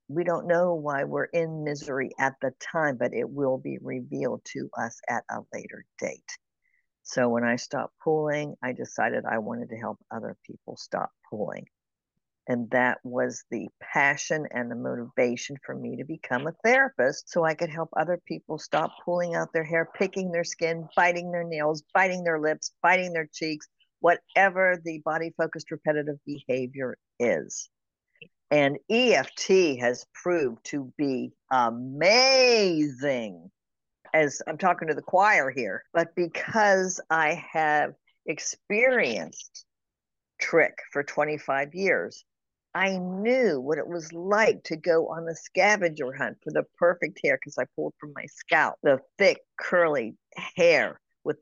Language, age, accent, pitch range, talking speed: English, 60-79, American, 145-180 Hz, 150 wpm